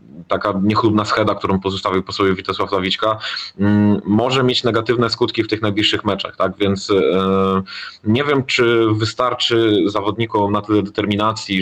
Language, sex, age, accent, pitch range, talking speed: Polish, male, 20-39, native, 100-120 Hz, 130 wpm